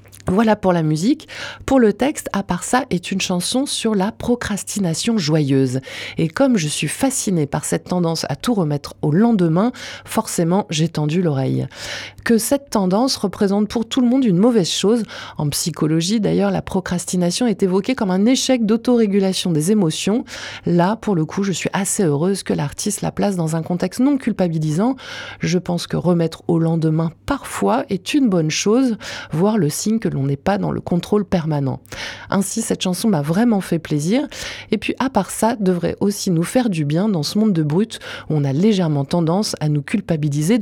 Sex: female